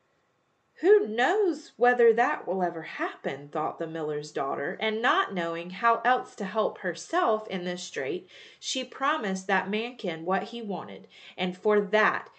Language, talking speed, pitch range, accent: English, 155 wpm, 195-285 Hz, American